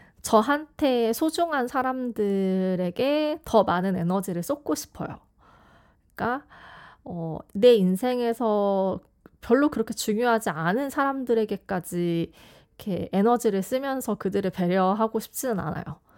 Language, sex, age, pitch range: Korean, female, 20-39, 185-255 Hz